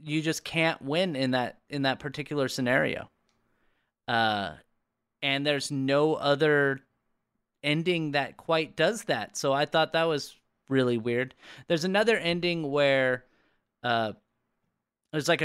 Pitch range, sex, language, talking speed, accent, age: 125-160 Hz, male, English, 130 wpm, American, 30-49